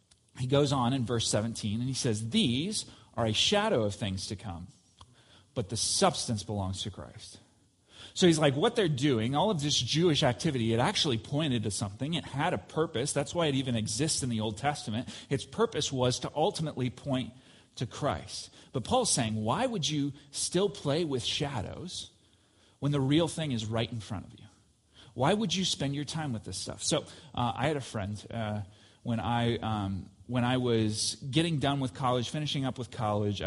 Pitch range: 110-140 Hz